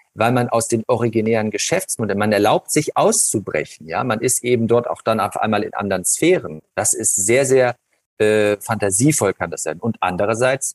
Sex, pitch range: male, 105-130 Hz